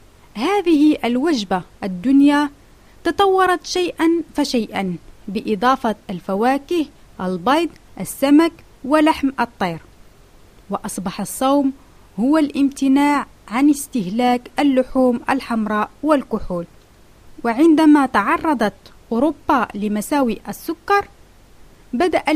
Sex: female